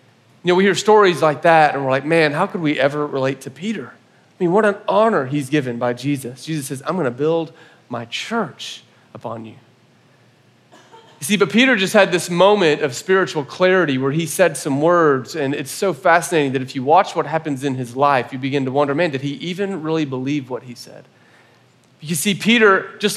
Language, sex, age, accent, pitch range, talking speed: English, male, 30-49, American, 145-205 Hz, 210 wpm